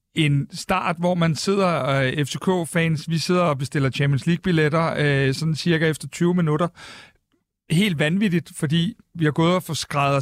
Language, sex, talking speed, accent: Danish, male, 145 wpm, native